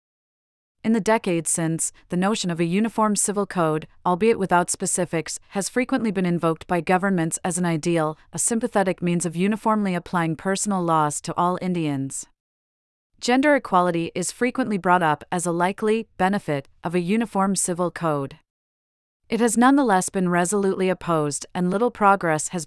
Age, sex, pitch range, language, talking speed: 30-49, female, 165-200 Hz, English, 155 wpm